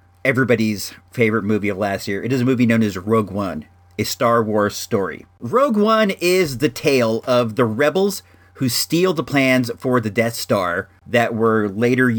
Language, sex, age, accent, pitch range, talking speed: English, male, 40-59, American, 105-130 Hz, 180 wpm